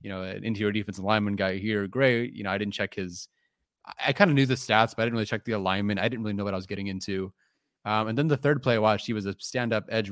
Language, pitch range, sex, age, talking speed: English, 95-120 Hz, male, 30-49, 295 wpm